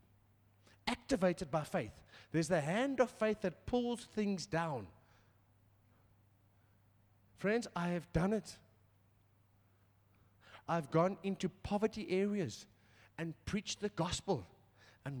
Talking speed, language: 105 wpm, English